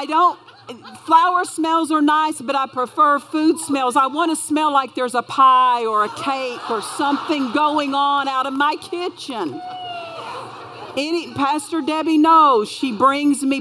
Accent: American